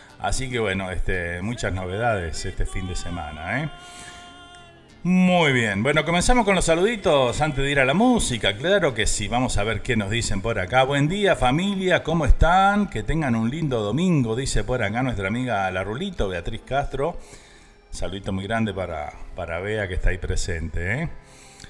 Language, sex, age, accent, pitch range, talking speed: Spanish, male, 40-59, Argentinian, 100-155 Hz, 180 wpm